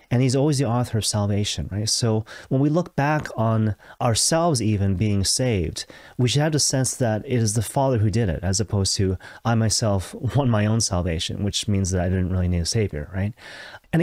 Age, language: 30-49, English